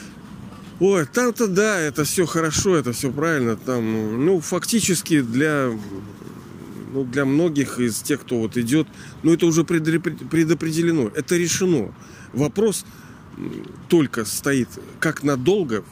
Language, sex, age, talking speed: Russian, male, 40-59, 120 wpm